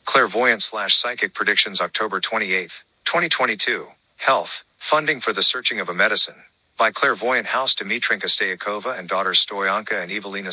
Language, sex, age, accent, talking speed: English, male, 50-69, American, 140 wpm